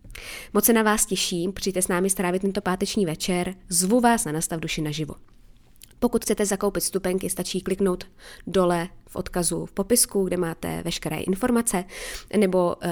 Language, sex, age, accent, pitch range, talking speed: Czech, female, 20-39, native, 170-195 Hz, 160 wpm